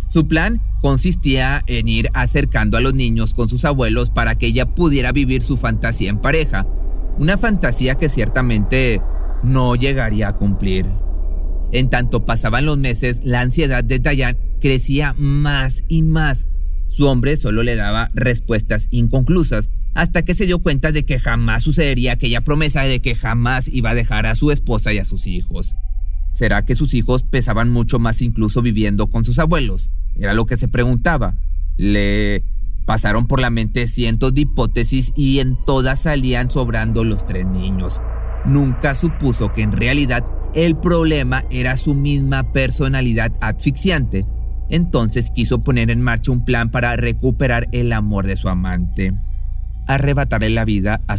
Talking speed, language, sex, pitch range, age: 160 wpm, Spanish, male, 105-135 Hz, 30-49